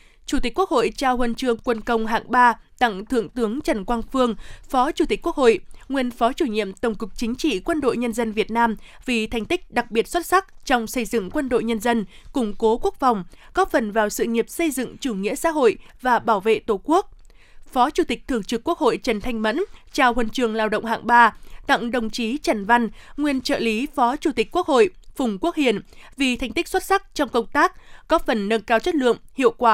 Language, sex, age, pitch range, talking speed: Vietnamese, female, 20-39, 225-310 Hz, 240 wpm